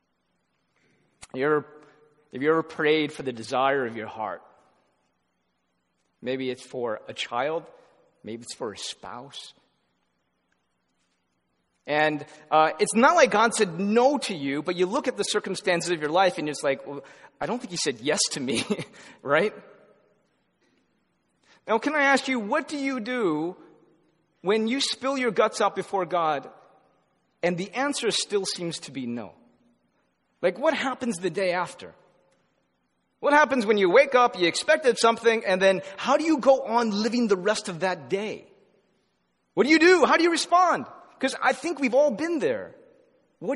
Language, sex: English, male